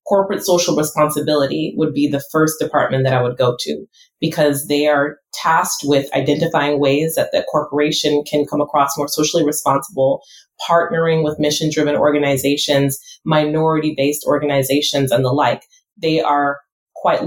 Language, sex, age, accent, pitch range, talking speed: English, female, 30-49, American, 145-165 Hz, 145 wpm